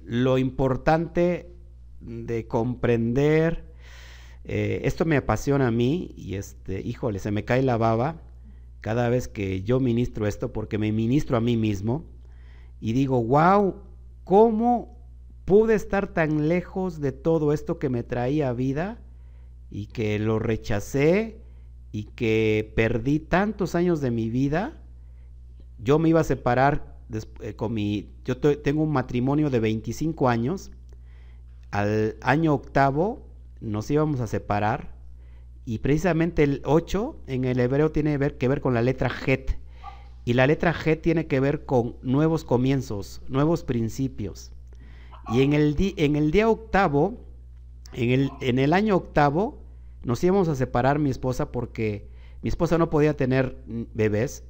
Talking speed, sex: 145 wpm, male